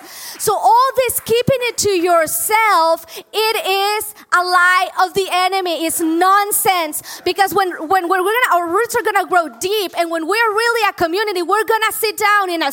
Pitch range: 310-400 Hz